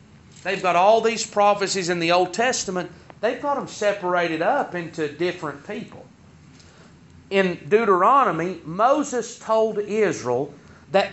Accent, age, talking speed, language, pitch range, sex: American, 40-59, 125 wpm, English, 170-245 Hz, male